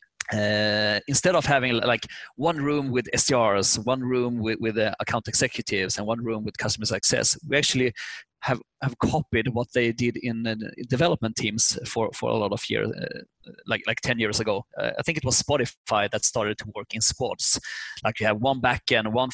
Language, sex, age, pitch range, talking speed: English, male, 30-49, 110-130 Hz, 200 wpm